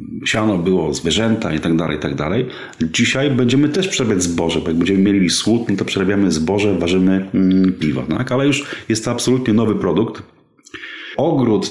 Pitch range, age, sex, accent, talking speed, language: 95-125 Hz, 30-49, male, native, 165 wpm, Polish